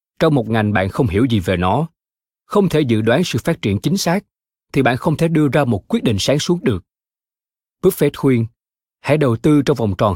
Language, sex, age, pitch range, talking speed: Vietnamese, male, 20-39, 110-150 Hz, 225 wpm